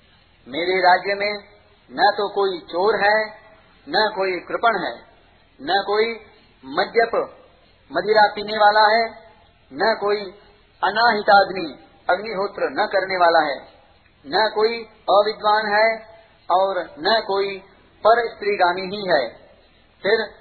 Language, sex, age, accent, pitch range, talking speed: Hindi, male, 40-59, native, 165-210 Hz, 115 wpm